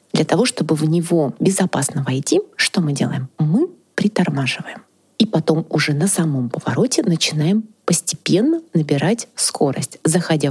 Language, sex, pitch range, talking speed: Russian, female, 155-200 Hz, 130 wpm